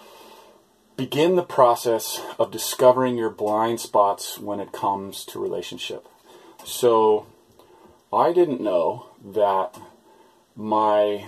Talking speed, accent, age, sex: 100 wpm, American, 30-49, male